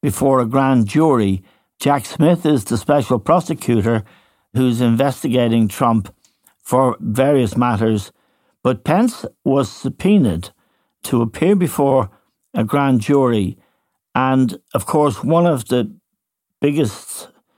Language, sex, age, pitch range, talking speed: English, male, 60-79, 115-145 Hz, 115 wpm